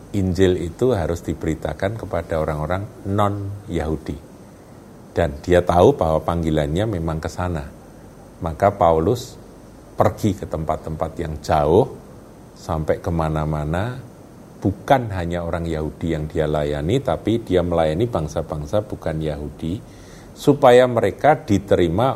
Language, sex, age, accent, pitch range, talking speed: Indonesian, male, 50-69, native, 80-100 Hz, 105 wpm